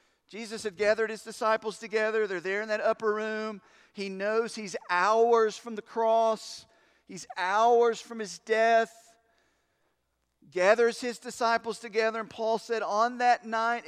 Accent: American